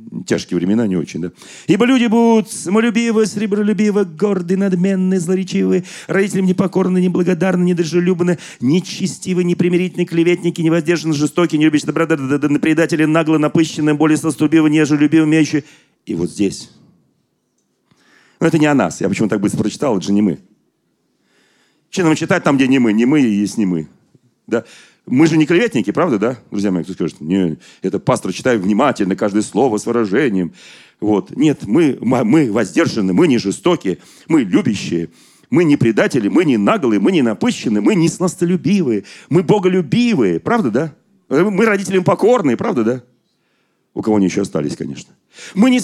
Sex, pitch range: male, 150-205 Hz